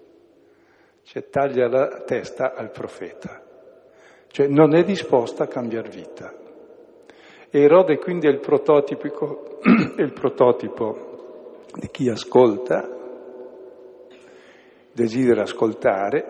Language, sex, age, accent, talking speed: Italian, male, 60-79, native, 90 wpm